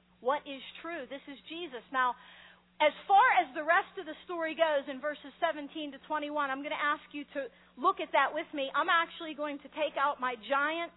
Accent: American